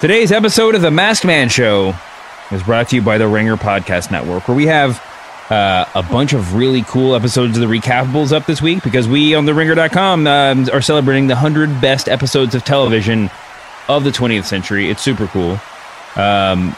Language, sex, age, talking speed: English, male, 30-49, 195 wpm